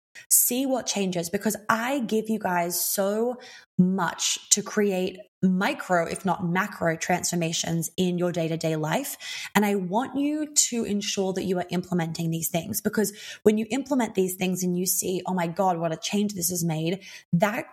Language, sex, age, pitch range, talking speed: English, female, 20-39, 175-215 Hz, 175 wpm